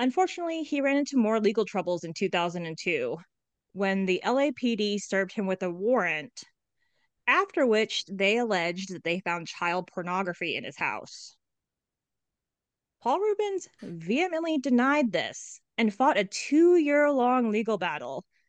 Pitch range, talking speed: 190-255 Hz, 130 wpm